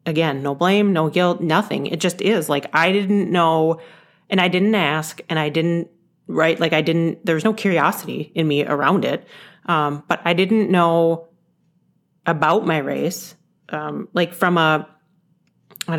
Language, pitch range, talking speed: English, 155-180 Hz, 170 wpm